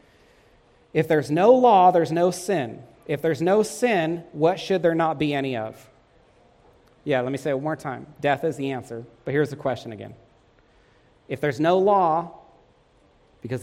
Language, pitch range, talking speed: English, 135-180 Hz, 175 wpm